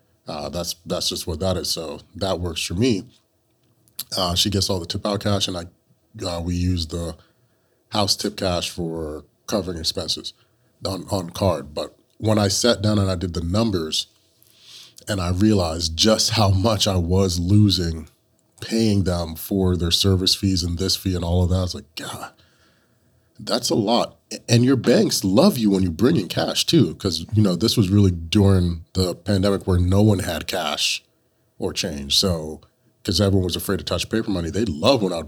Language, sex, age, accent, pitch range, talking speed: English, male, 30-49, American, 85-105 Hz, 195 wpm